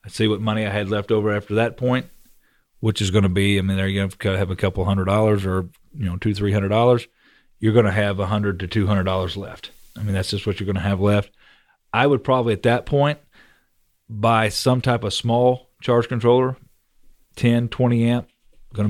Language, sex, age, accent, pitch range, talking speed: English, male, 40-59, American, 100-115 Hz, 215 wpm